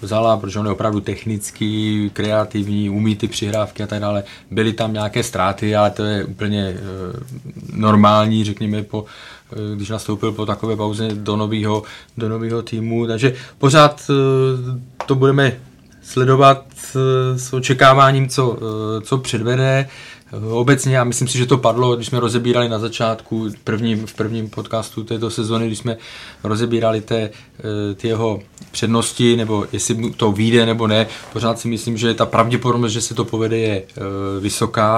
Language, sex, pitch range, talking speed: Czech, male, 105-120 Hz, 160 wpm